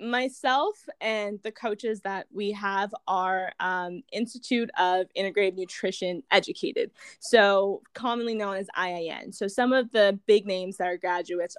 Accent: American